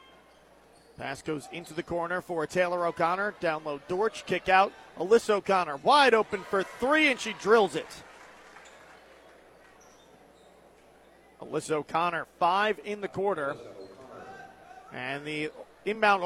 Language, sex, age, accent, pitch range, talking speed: English, male, 40-59, American, 165-200 Hz, 120 wpm